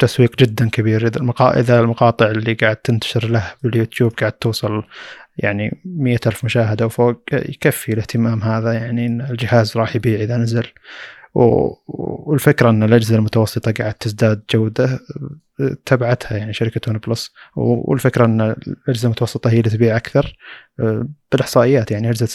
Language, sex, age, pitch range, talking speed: Arabic, male, 20-39, 110-125 Hz, 130 wpm